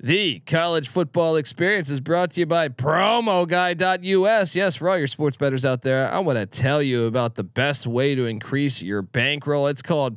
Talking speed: 195 wpm